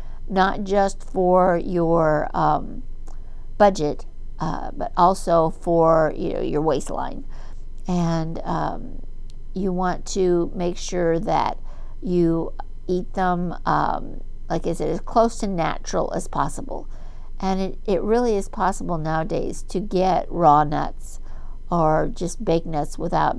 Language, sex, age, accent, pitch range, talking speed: English, female, 50-69, American, 160-190 Hz, 130 wpm